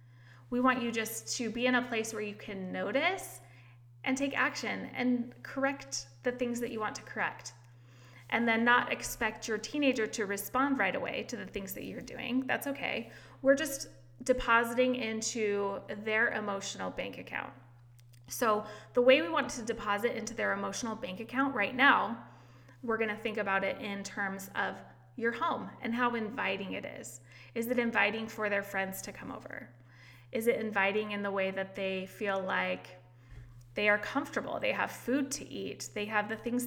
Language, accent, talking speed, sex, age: English, American, 180 wpm, female, 20-39